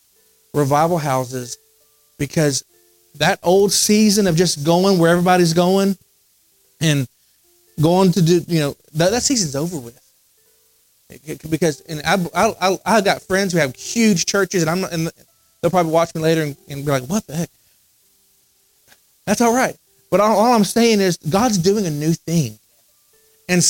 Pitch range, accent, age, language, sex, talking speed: 145-195 Hz, American, 30-49, English, male, 170 wpm